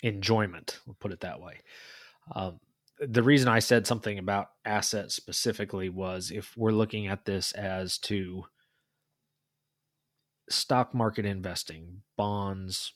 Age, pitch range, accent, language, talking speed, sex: 30-49, 100-125 Hz, American, English, 125 wpm, male